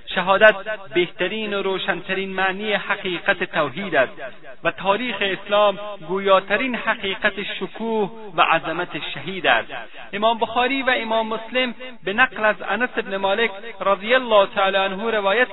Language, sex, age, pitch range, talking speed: Persian, male, 40-59, 175-225 Hz, 130 wpm